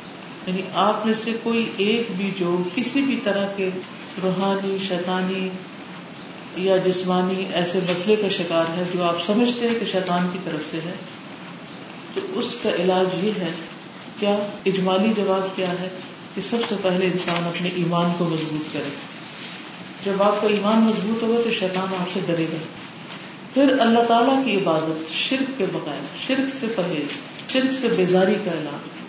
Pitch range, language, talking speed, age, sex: 180-230 Hz, Urdu, 160 wpm, 50-69, female